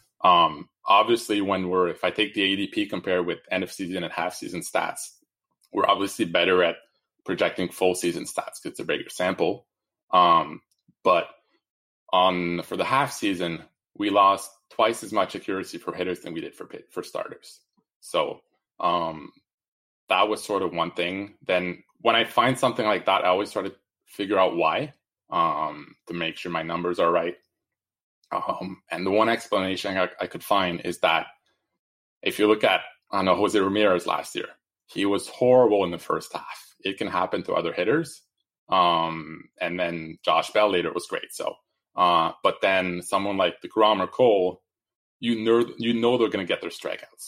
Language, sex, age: English, male, 20-39